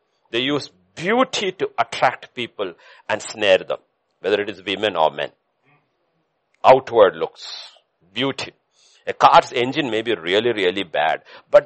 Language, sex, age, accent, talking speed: English, male, 60-79, Indian, 140 wpm